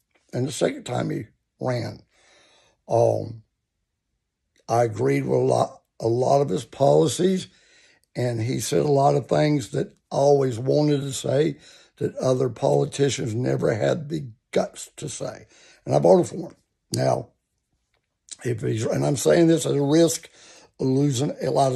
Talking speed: 155 wpm